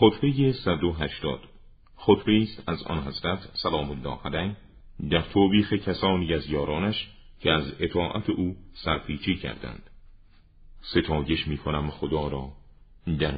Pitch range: 75-90 Hz